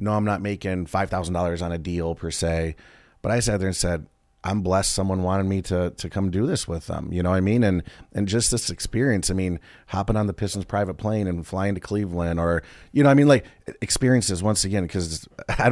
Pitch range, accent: 90-105 Hz, American